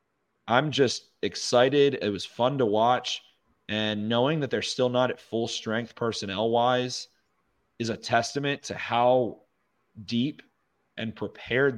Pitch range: 110-130 Hz